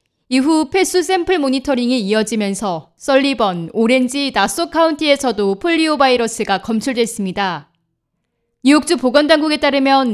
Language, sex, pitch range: Korean, female, 210-290 Hz